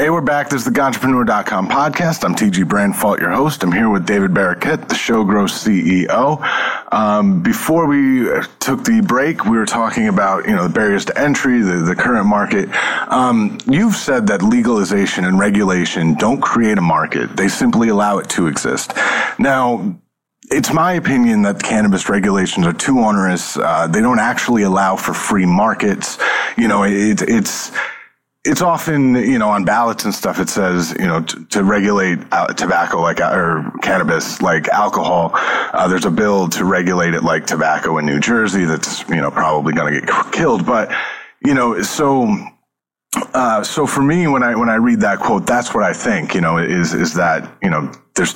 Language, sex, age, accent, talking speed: English, male, 30-49, American, 185 wpm